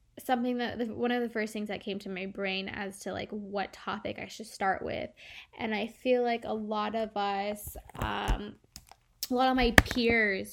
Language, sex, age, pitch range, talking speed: English, female, 10-29, 205-245 Hz, 200 wpm